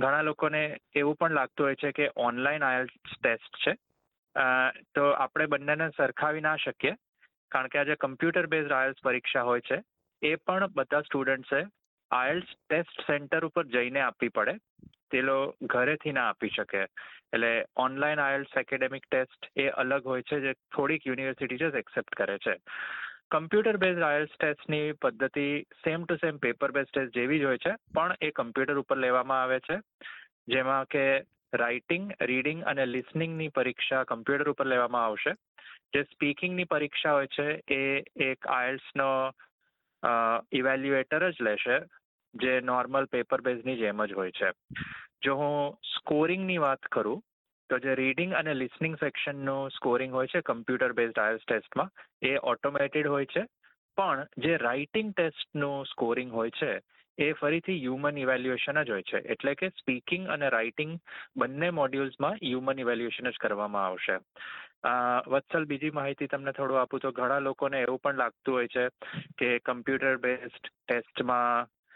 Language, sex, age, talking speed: Gujarati, male, 30-49, 150 wpm